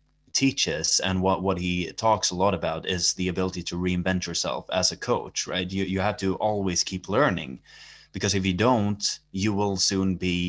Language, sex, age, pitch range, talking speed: English, male, 20-39, 90-105 Hz, 195 wpm